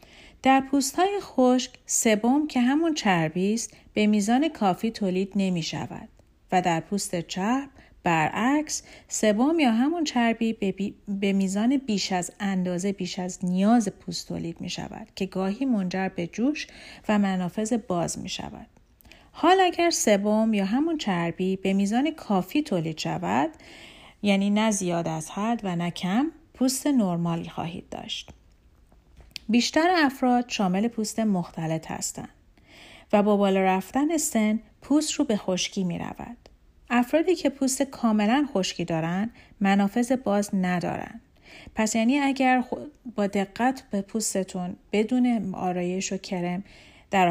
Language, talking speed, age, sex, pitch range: Persian, 135 wpm, 40-59, female, 185-250 Hz